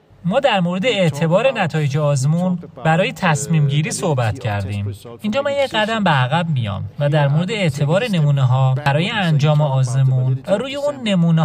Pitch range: 135-185 Hz